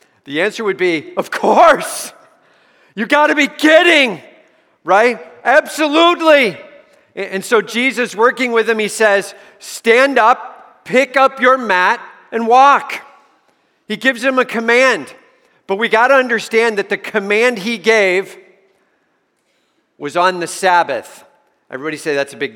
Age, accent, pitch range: 50-69, American, 190-250 Hz